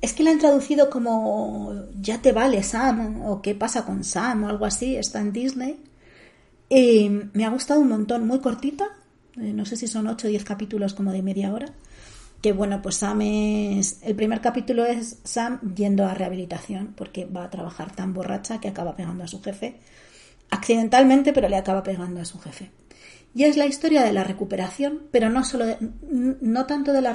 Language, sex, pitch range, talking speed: Spanish, female, 195-235 Hz, 200 wpm